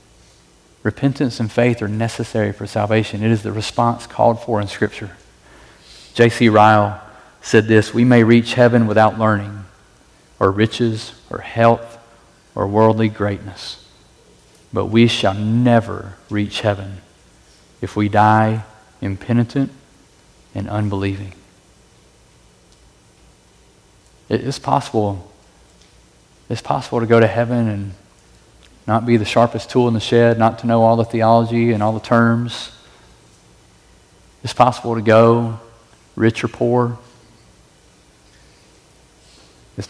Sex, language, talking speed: male, English, 120 wpm